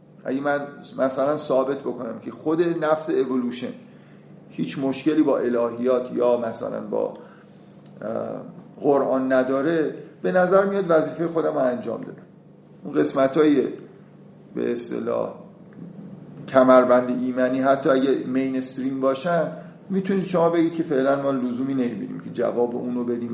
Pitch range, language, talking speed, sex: 125-165 Hz, Persian, 130 wpm, male